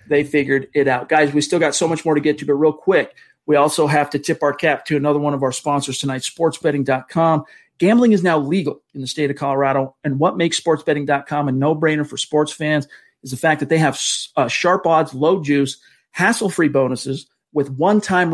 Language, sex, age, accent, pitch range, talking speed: English, male, 40-59, American, 140-160 Hz, 215 wpm